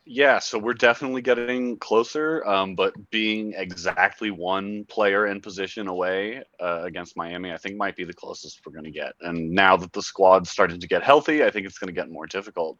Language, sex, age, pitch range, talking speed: English, male, 30-49, 90-120 Hz, 210 wpm